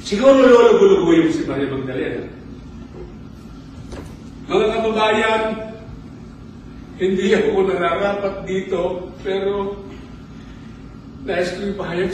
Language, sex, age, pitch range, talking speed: Filipino, male, 40-59, 205-270 Hz, 90 wpm